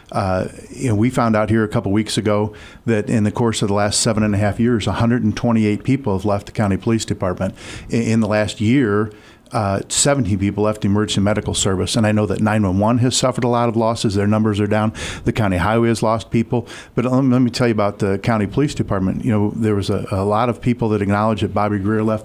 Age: 50-69